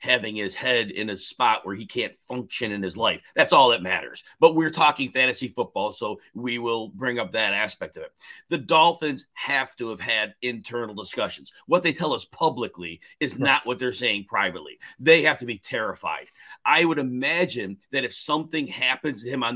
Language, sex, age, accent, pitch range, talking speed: English, male, 40-59, American, 120-155 Hz, 200 wpm